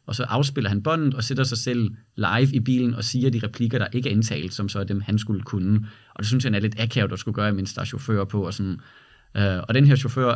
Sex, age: male, 30-49